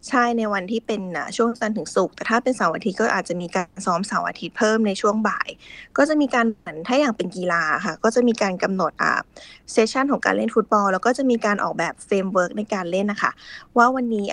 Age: 20-39